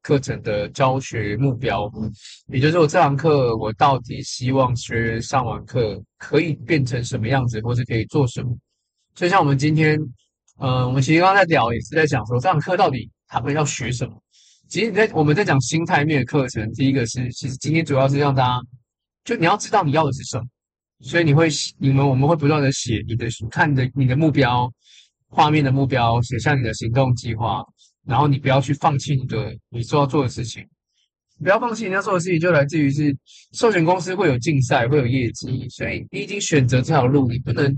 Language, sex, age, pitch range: Chinese, male, 20-39, 125-155 Hz